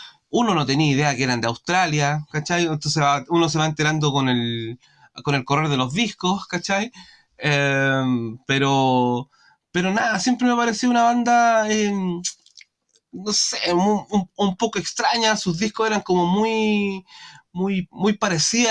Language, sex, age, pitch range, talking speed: Spanish, male, 20-39, 145-195 Hz, 150 wpm